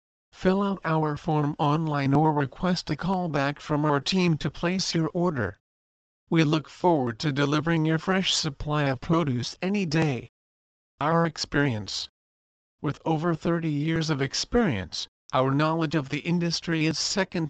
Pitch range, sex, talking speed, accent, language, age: 125-165 Hz, male, 150 wpm, American, English, 50-69